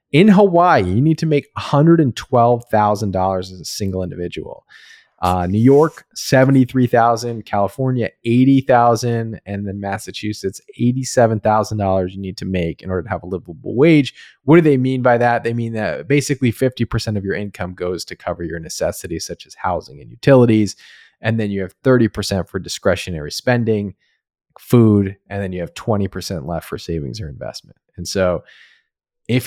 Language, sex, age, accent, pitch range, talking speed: English, male, 30-49, American, 95-125 Hz, 160 wpm